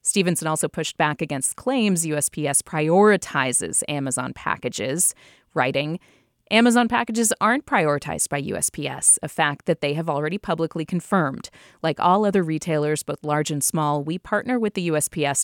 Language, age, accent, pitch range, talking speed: English, 30-49, American, 155-205 Hz, 150 wpm